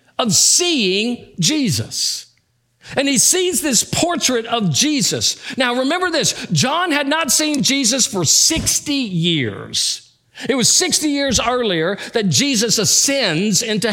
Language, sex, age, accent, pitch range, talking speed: English, male, 50-69, American, 180-250 Hz, 130 wpm